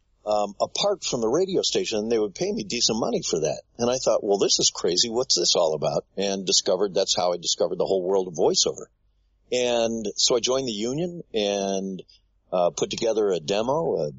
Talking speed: 205 wpm